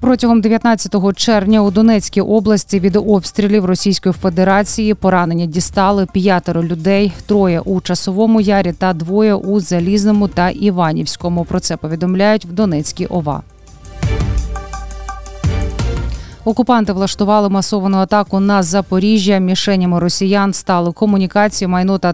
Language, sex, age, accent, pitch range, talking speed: Ukrainian, female, 20-39, native, 170-205 Hz, 115 wpm